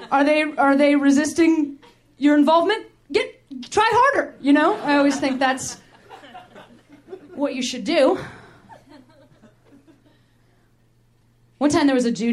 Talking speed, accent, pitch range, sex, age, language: 125 wpm, American, 170-260 Hz, female, 30-49, English